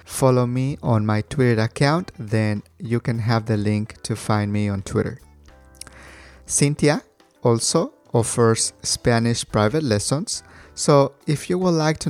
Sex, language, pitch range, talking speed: male, English, 110-135 Hz, 145 wpm